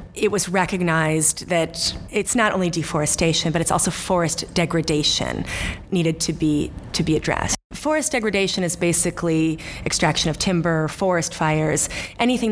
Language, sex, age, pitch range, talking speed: English, female, 30-49, 160-190 Hz, 140 wpm